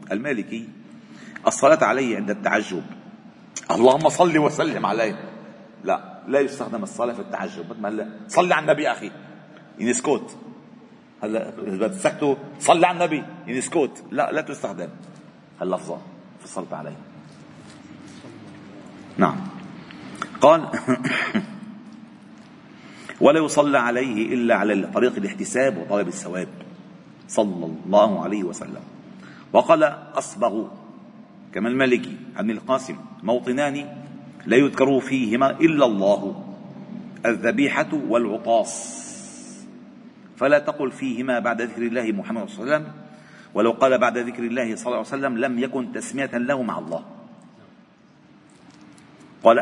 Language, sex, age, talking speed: Arabic, male, 40-59, 110 wpm